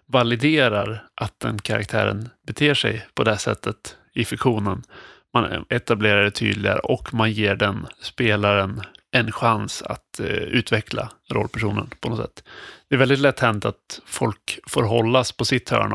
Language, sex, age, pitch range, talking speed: Swedish, male, 30-49, 105-125 Hz, 150 wpm